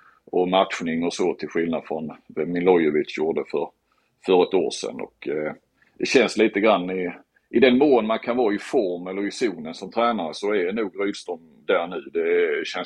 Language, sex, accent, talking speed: Swedish, male, native, 200 wpm